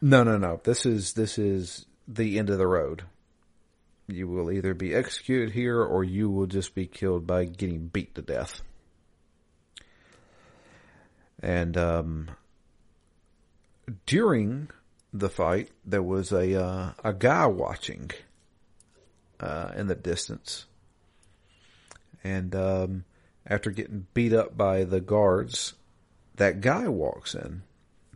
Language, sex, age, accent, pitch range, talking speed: English, male, 50-69, American, 85-100 Hz, 125 wpm